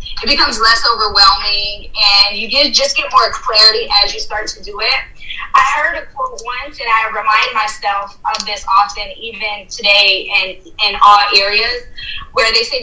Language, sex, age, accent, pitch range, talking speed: English, female, 10-29, American, 205-255 Hz, 175 wpm